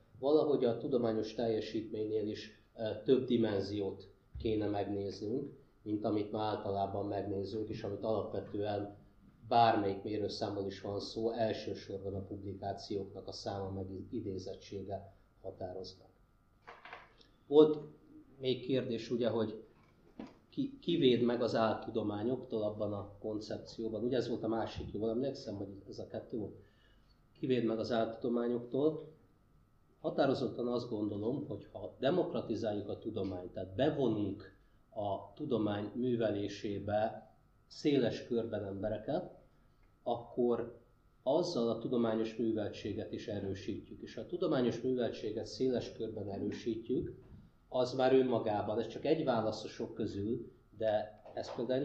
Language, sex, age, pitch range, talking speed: Hungarian, male, 30-49, 100-120 Hz, 120 wpm